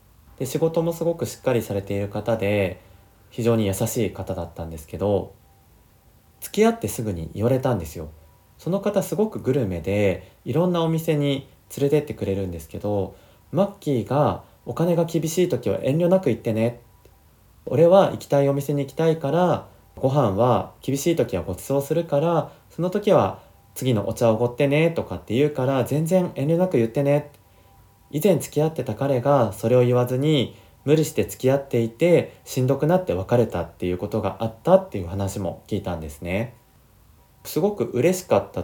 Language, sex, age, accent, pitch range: Japanese, male, 30-49, native, 95-145 Hz